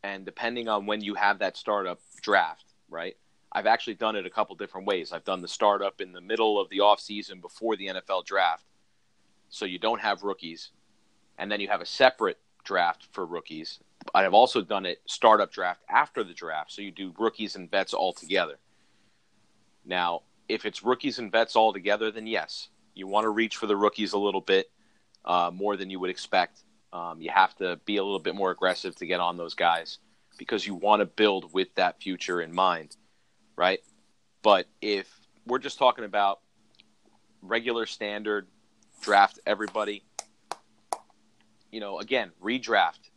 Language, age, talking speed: English, 30-49, 180 wpm